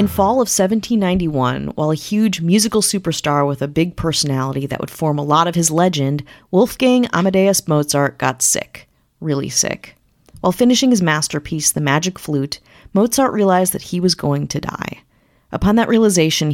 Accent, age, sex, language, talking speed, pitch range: American, 30-49, female, English, 165 wpm, 150-200 Hz